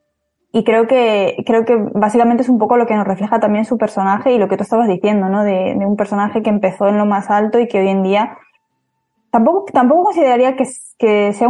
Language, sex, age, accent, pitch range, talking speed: Spanish, female, 10-29, Spanish, 200-240 Hz, 230 wpm